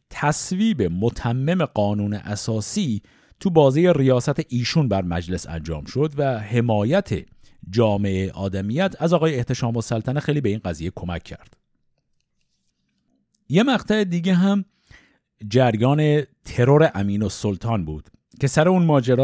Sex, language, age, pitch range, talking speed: male, Persian, 50-69, 95-150 Hz, 125 wpm